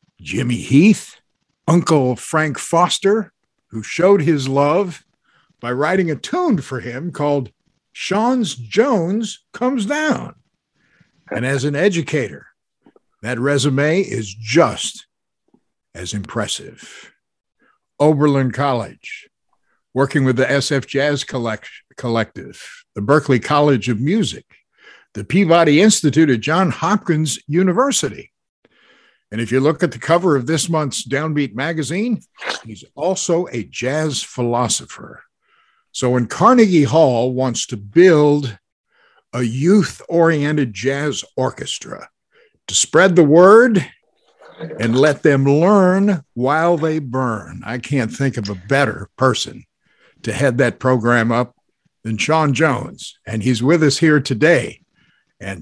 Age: 60-79